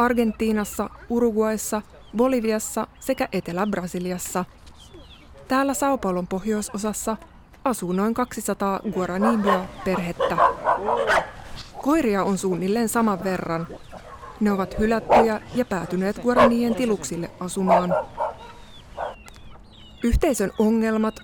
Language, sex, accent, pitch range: Finnish, female, native, 185-235 Hz